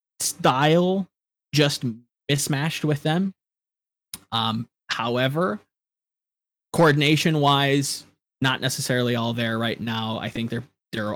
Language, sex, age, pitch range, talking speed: English, male, 20-39, 110-130 Hz, 100 wpm